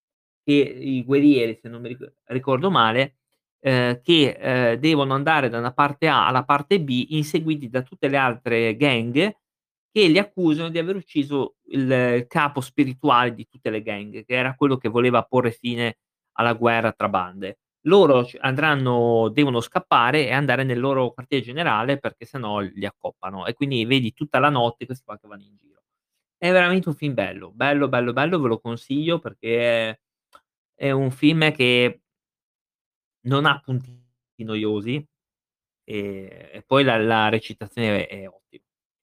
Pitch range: 115-145 Hz